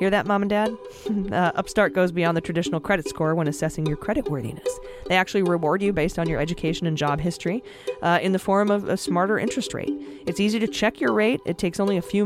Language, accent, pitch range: English, American, 160-205 Hz